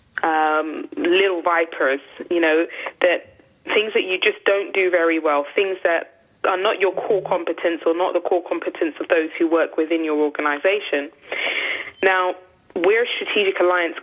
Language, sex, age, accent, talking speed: English, female, 20-39, British, 165 wpm